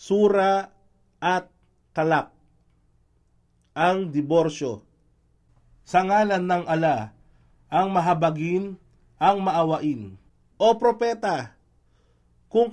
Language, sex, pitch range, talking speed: Filipino, male, 140-200 Hz, 75 wpm